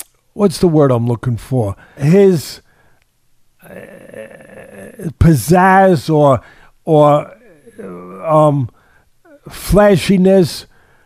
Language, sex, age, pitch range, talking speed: English, male, 50-69, 145-190 Hz, 70 wpm